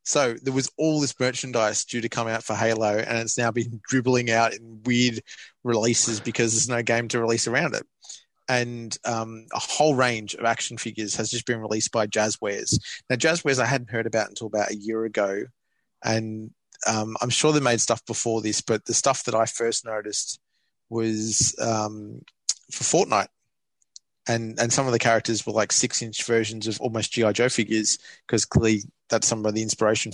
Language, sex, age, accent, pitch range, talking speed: English, male, 20-39, Australian, 110-120 Hz, 190 wpm